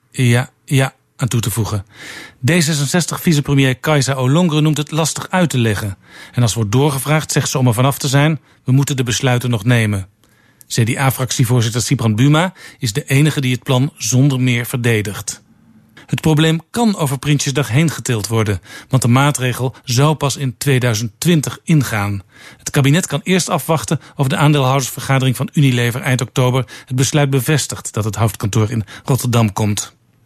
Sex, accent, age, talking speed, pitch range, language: male, Dutch, 50-69, 160 wpm, 120-145 Hz, Dutch